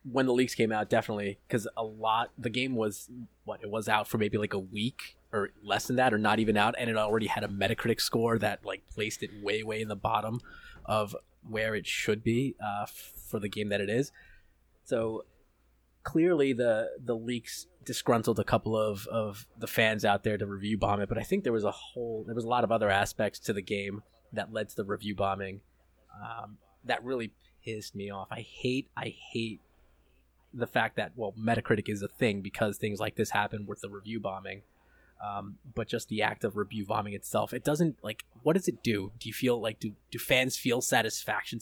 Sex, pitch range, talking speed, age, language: male, 105-120 Hz, 215 wpm, 20-39, English